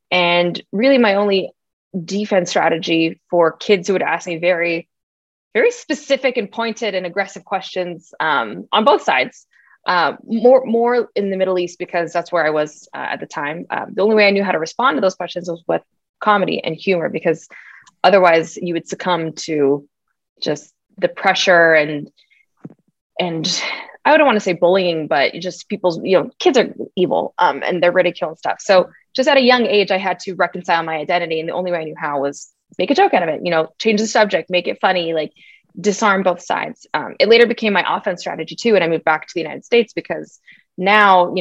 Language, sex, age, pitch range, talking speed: English, female, 20-39, 170-205 Hz, 210 wpm